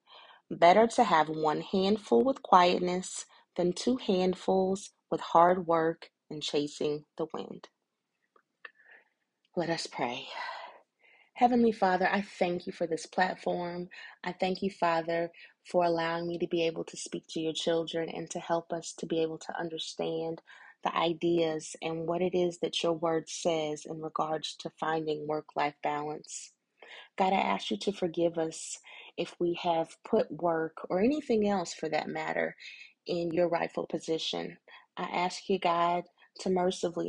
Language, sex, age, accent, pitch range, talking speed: English, female, 30-49, American, 160-190 Hz, 155 wpm